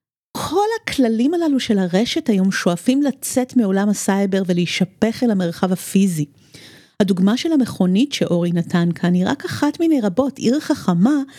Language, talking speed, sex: Hebrew, 140 wpm, female